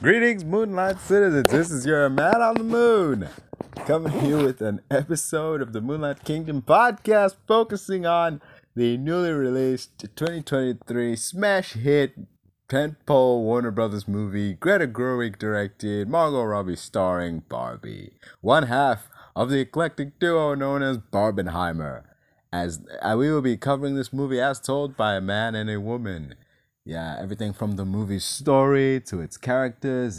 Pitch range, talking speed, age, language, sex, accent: 100-150 Hz, 145 wpm, 30-49, English, male, American